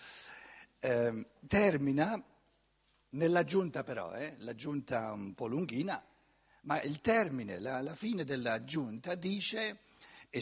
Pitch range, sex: 120-185 Hz, male